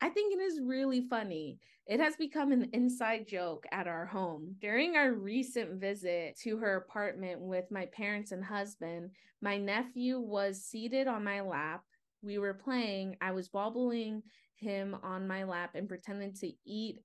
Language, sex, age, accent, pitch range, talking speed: English, female, 20-39, American, 185-235 Hz, 170 wpm